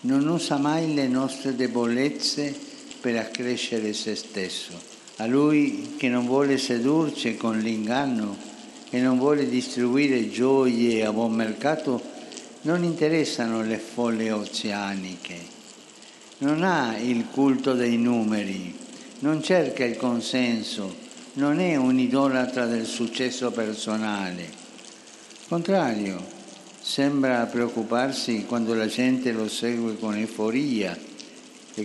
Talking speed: 110 wpm